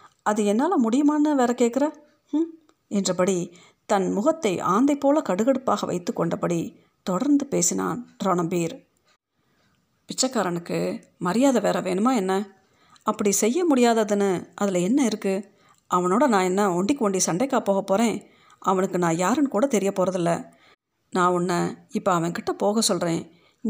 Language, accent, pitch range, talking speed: Tamil, native, 185-260 Hz, 120 wpm